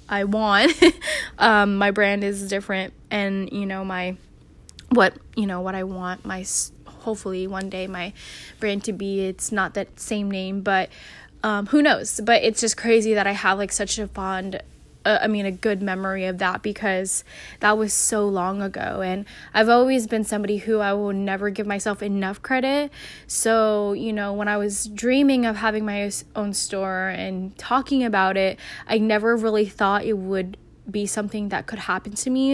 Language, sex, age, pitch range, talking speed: English, female, 10-29, 195-225 Hz, 185 wpm